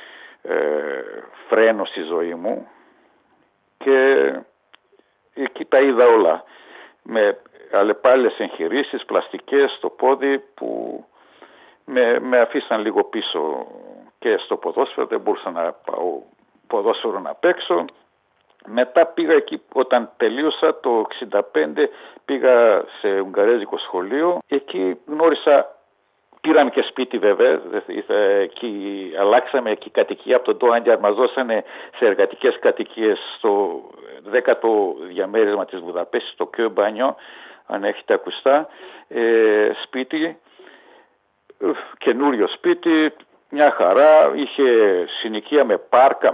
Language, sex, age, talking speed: Greek, male, 60-79, 110 wpm